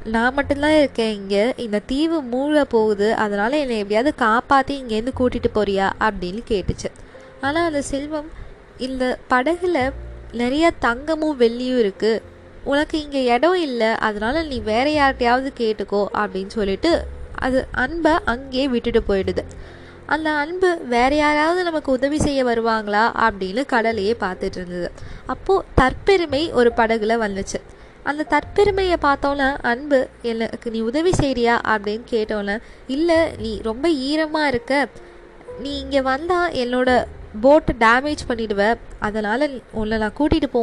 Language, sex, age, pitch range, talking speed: Tamil, female, 20-39, 220-285 Hz, 125 wpm